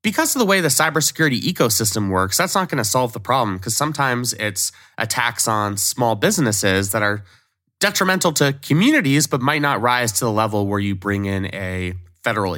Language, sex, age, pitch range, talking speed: English, male, 20-39, 100-140 Hz, 190 wpm